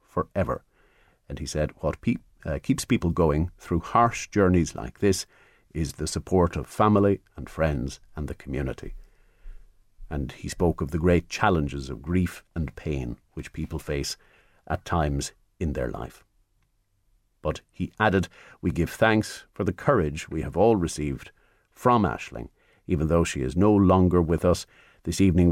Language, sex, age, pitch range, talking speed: English, male, 50-69, 80-110 Hz, 160 wpm